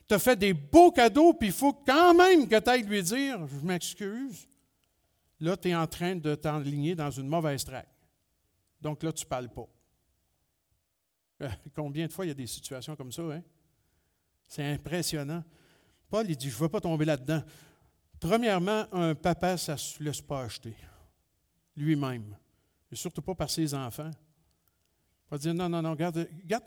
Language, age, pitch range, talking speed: French, 50-69, 140-205 Hz, 180 wpm